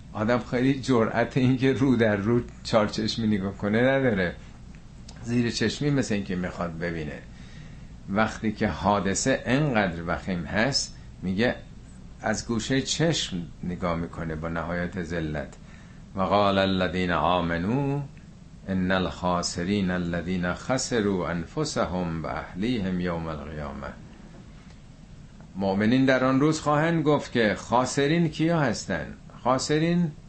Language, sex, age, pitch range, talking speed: Persian, male, 50-69, 95-135 Hz, 110 wpm